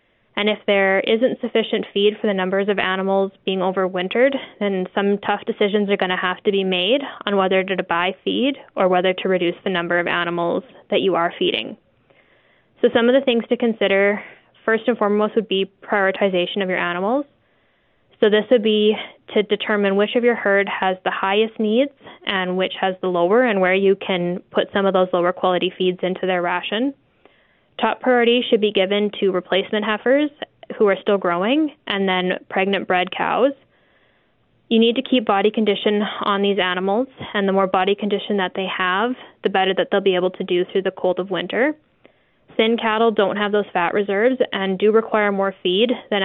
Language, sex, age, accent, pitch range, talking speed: English, female, 10-29, American, 185-215 Hz, 195 wpm